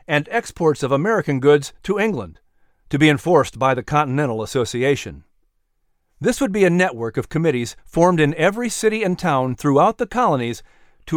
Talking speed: 165 wpm